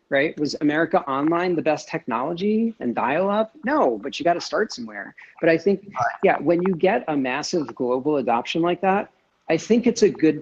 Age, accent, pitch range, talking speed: 40-59, American, 130-170 Hz, 200 wpm